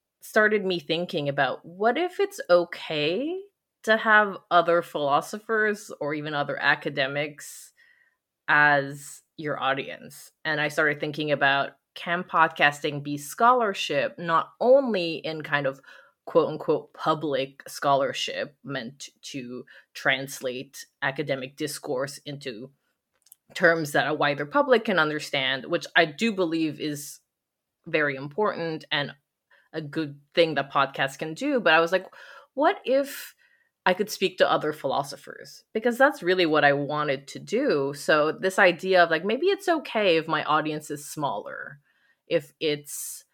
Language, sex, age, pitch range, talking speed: English, female, 20-39, 145-185 Hz, 135 wpm